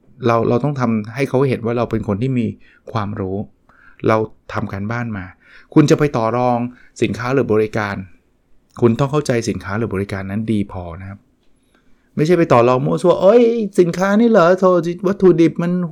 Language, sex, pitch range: Thai, male, 105-130 Hz